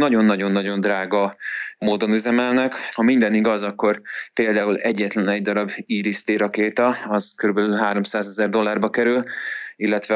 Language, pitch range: Hungarian, 105-115 Hz